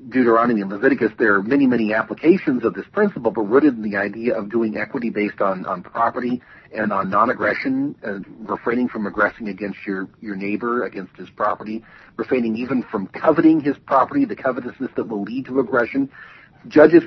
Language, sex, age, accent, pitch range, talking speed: English, male, 50-69, American, 115-155 Hz, 175 wpm